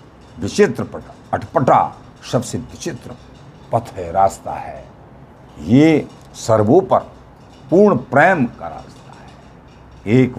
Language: Hindi